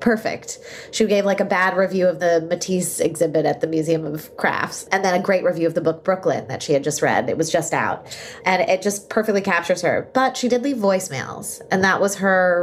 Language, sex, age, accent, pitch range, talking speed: English, female, 20-39, American, 170-230 Hz, 235 wpm